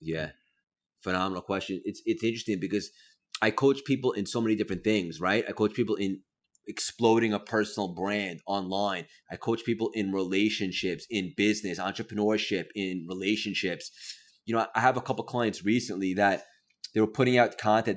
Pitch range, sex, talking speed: 95-110 Hz, male, 165 wpm